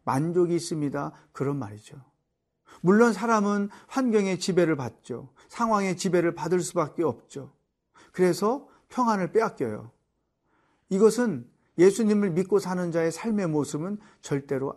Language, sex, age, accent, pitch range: Korean, male, 40-59, native, 155-200 Hz